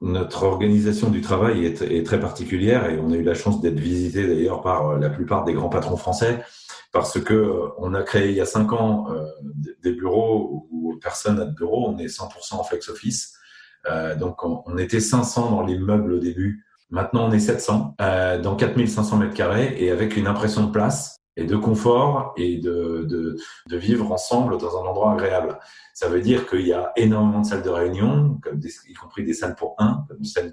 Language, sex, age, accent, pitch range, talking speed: French, male, 40-59, French, 90-110 Hz, 200 wpm